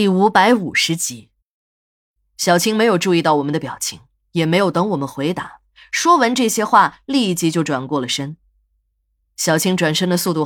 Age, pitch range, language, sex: 20-39, 145-215 Hz, Chinese, female